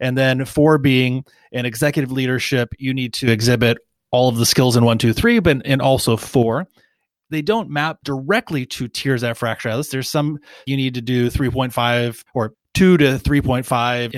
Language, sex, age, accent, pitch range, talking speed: English, male, 30-49, American, 115-140 Hz, 175 wpm